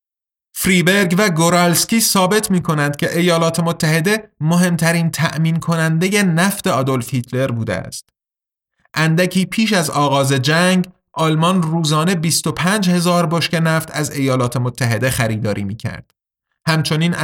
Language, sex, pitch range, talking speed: Persian, male, 135-175 Hz, 110 wpm